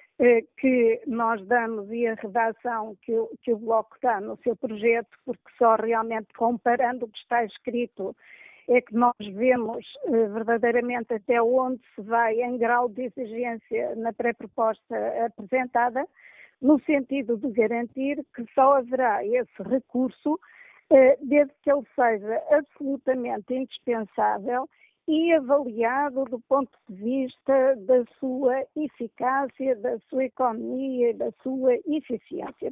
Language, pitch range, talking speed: Portuguese, 230-270 Hz, 125 wpm